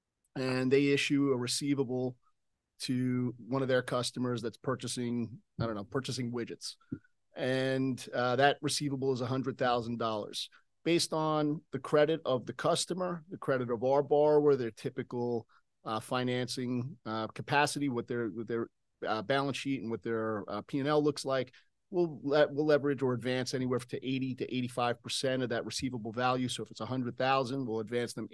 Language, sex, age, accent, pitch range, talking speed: English, male, 30-49, American, 120-140 Hz, 160 wpm